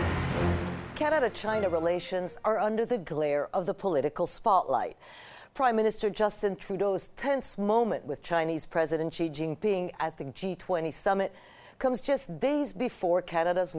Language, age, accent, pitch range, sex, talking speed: English, 50-69, American, 170-225 Hz, female, 130 wpm